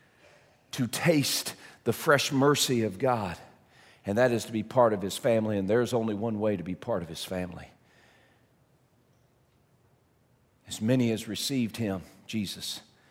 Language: English